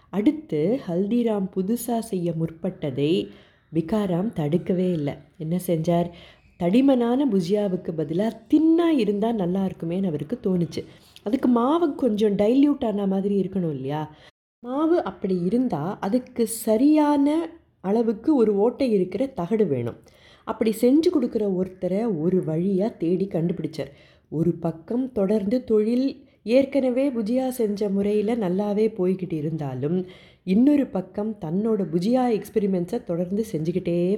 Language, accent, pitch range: Tamil, native, 175-235 Hz